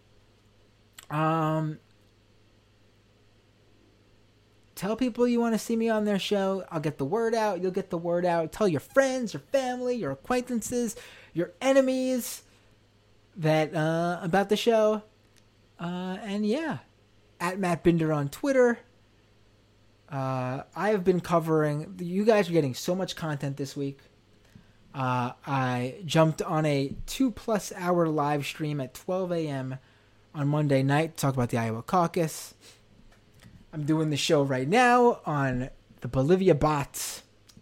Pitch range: 120-185 Hz